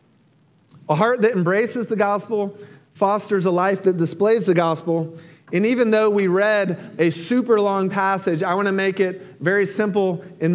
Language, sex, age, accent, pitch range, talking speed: English, male, 40-59, American, 165-210 Hz, 170 wpm